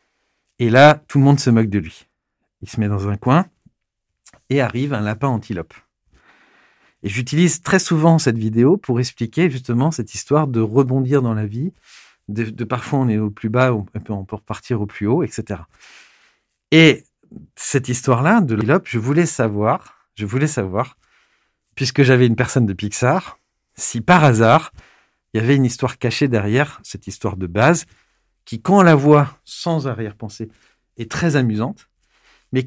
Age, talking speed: 50-69, 170 wpm